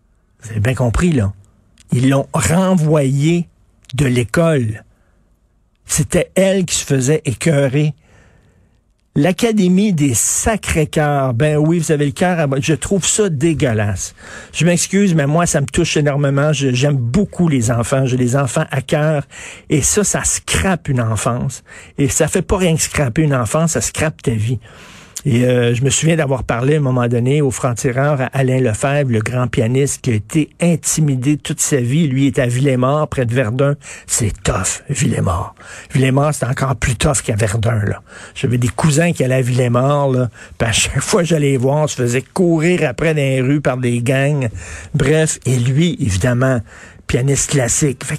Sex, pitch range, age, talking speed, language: male, 120-155 Hz, 50-69, 180 wpm, French